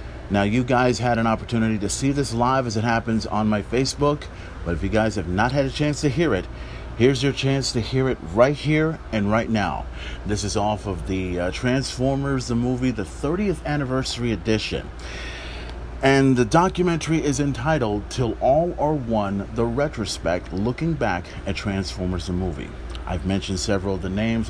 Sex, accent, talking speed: male, American, 185 wpm